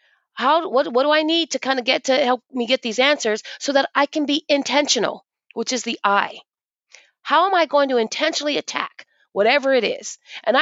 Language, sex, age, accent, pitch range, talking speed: English, female, 30-49, American, 235-310 Hz, 210 wpm